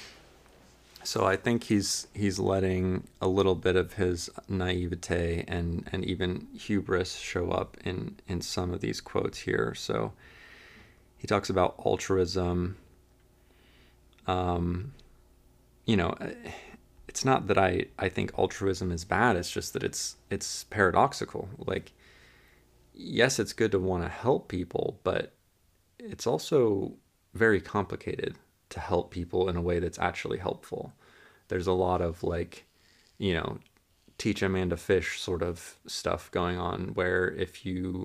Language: English